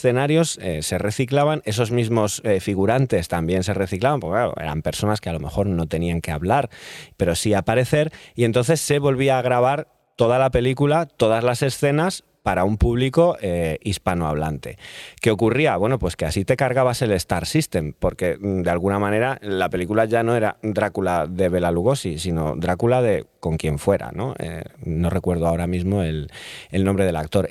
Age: 30-49